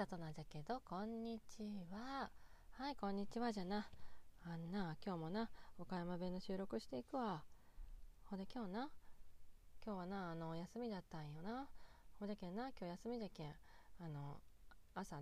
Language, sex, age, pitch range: Japanese, female, 20-39, 160-215 Hz